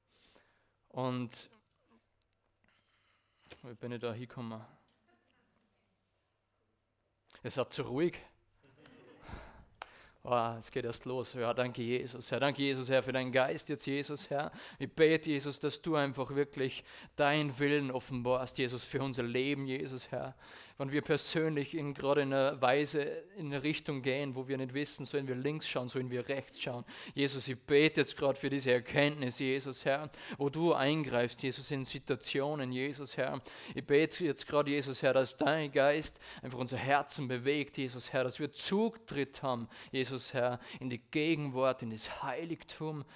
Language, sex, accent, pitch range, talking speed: German, male, German, 120-145 Hz, 155 wpm